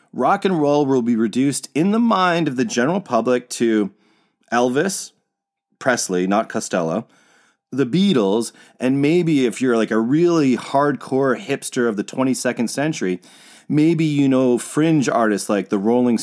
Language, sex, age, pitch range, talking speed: English, male, 30-49, 110-150 Hz, 150 wpm